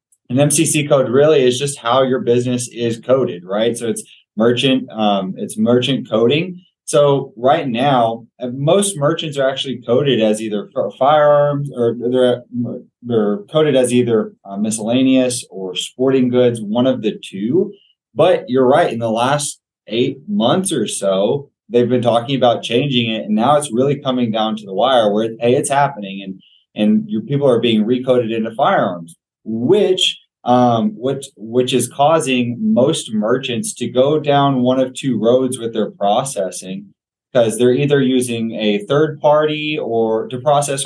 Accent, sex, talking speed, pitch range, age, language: American, male, 160 wpm, 110-135 Hz, 20-39, English